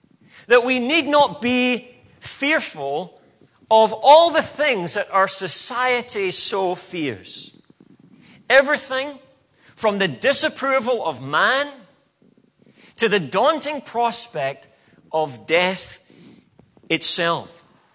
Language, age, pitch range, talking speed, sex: English, 40-59, 155-250 Hz, 95 wpm, male